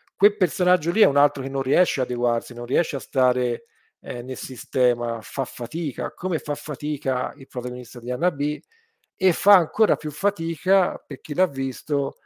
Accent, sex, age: native, male, 50-69